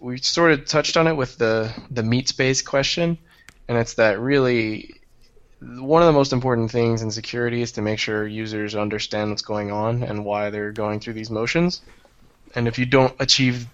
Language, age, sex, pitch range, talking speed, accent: English, 20-39, male, 105-130 Hz, 190 wpm, American